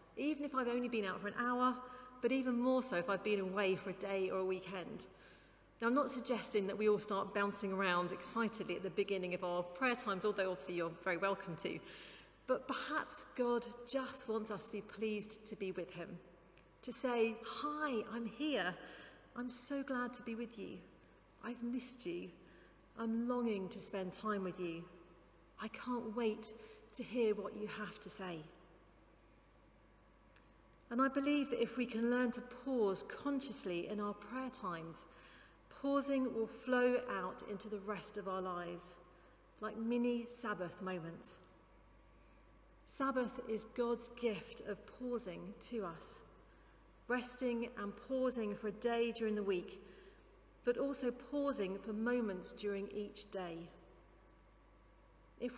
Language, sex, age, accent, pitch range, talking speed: English, female, 40-59, British, 195-245 Hz, 160 wpm